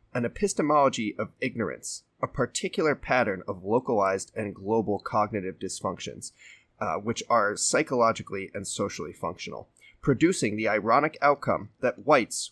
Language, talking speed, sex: English, 125 wpm, male